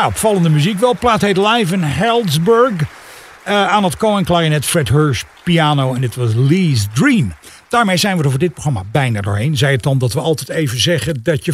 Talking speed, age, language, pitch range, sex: 215 wpm, 50-69, Dutch, 125-180 Hz, male